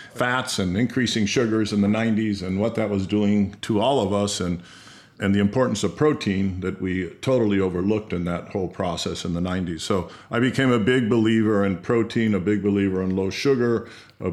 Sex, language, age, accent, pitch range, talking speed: male, English, 50-69, American, 100-115 Hz, 200 wpm